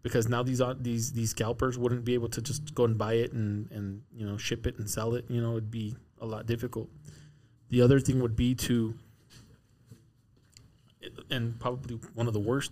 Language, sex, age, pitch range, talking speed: English, male, 20-39, 110-125 Hz, 210 wpm